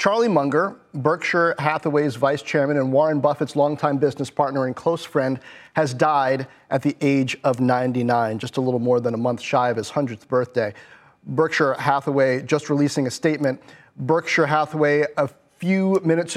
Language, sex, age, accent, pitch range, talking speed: English, male, 30-49, American, 135-160 Hz, 165 wpm